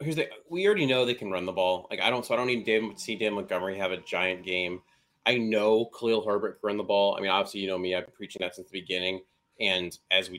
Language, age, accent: English, 30-49, American